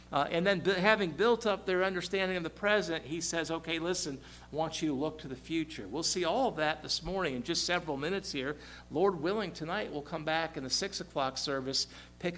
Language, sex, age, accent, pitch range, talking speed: English, male, 50-69, American, 145-185 Hz, 235 wpm